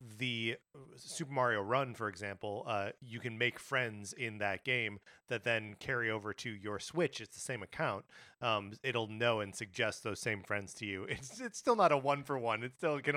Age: 30-49